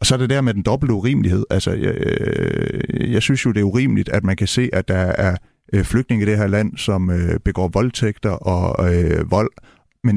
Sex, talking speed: male, 210 wpm